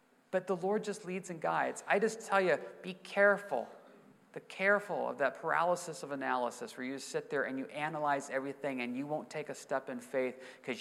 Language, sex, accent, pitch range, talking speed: English, male, American, 130-180 Hz, 205 wpm